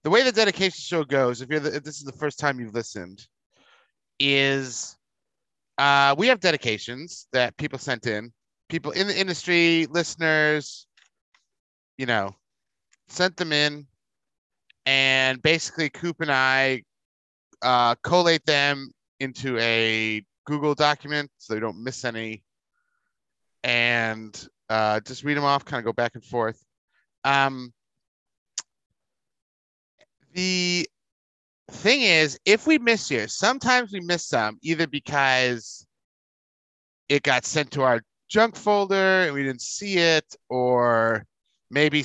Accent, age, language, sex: American, 30-49, English, male